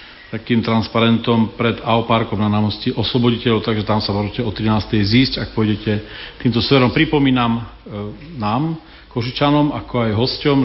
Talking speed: 140 wpm